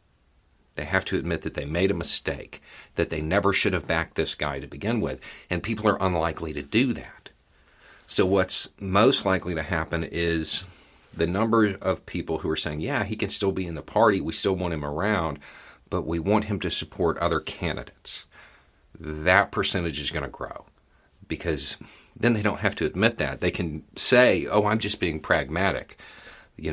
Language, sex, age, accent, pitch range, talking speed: English, male, 40-59, American, 75-95 Hz, 190 wpm